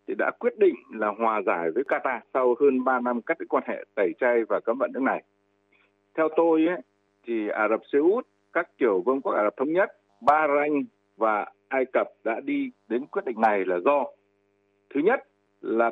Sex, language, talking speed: male, Vietnamese, 205 wpm